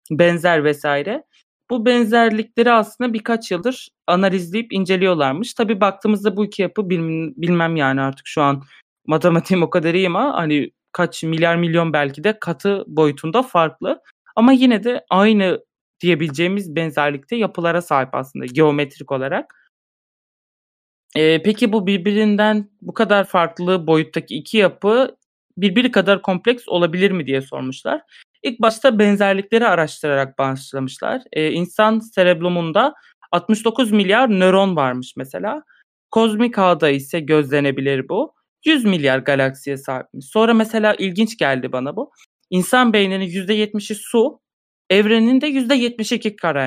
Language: Turkish